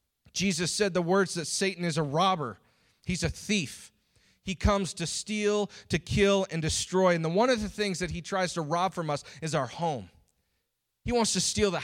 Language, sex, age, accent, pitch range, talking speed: English, male, 30-49, American, 155-200 Hz, 205 wpm